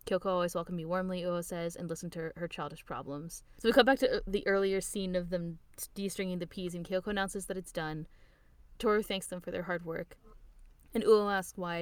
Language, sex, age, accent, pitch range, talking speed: English, female, 10-29, American, 170-205 Hz, 230 wpm